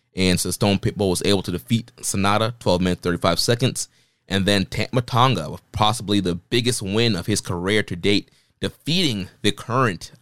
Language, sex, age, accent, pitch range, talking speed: English, male, 20-39, American, 95-115 Hz, 175 wpm